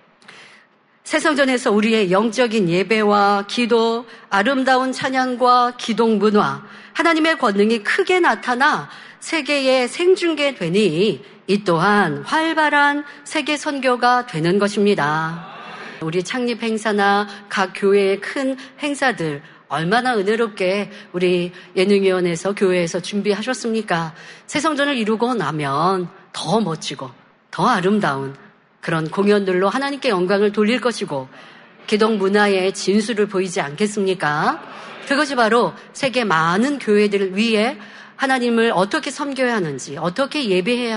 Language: Korean